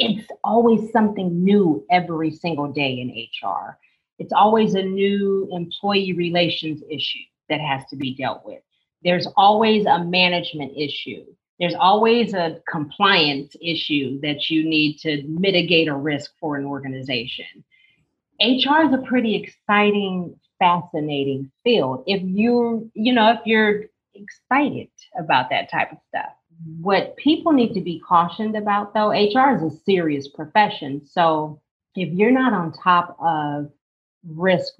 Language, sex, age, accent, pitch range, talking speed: English, female, 40-59, American, 150-190 Hz, 135 wpm